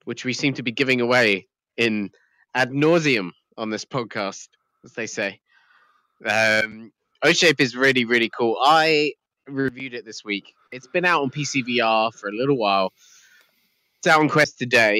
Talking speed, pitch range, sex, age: 170 wpm, 100-125 Hz, male, 20-39